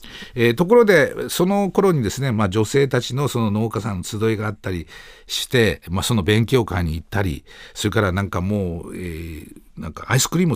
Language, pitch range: Japanese, 95-135 Hz